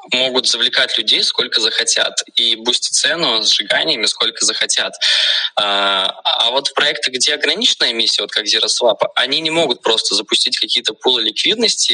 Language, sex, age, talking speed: Russian, male, 20-39, 150 wpm